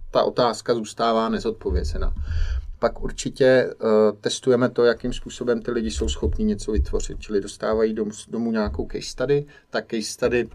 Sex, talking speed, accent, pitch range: male, 155 wpm, native, 100-110 Hz